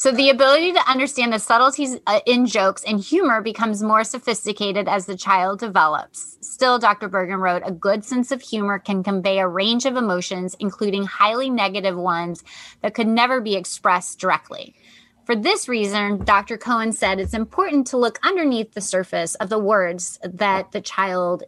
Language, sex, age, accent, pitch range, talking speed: English, female, 20-39, American, 190-245 Hz, 175 wpm